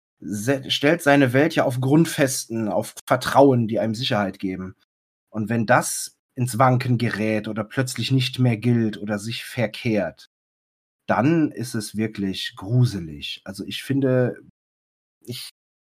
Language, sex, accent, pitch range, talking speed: German, male, German, 105-140 Hz, 135 wpm